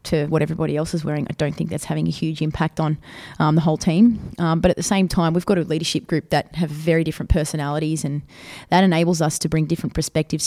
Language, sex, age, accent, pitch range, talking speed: English, female, 20-39, Australian, 150-175 Hz, 245 wpm